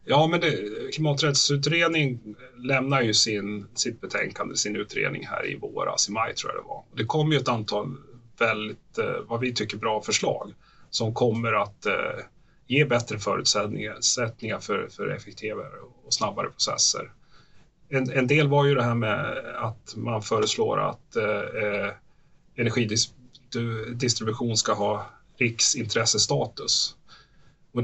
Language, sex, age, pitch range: Swedish, male, 30-49, 110-135 Hz